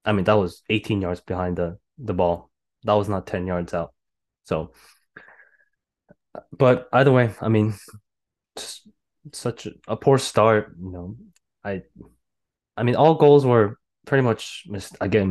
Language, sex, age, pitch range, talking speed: English, male, 20-39, 100-125 Hz, 150 wpm